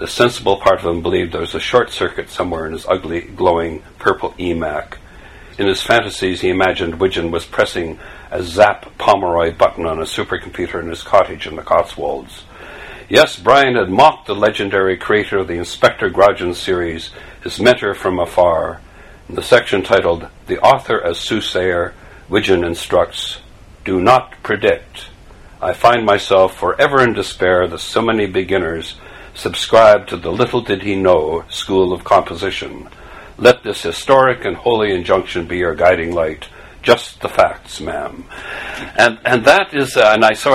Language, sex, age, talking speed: English, male, 60-79, 160 wpm